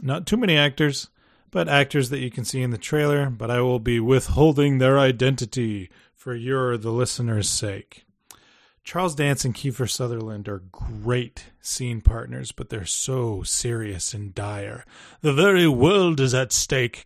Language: English